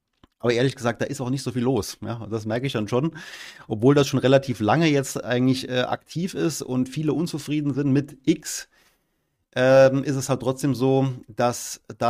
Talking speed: 195 wpm